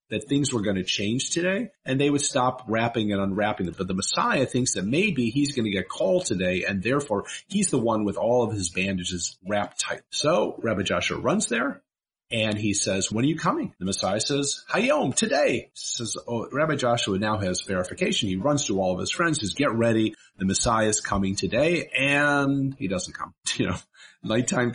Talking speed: 205 wpm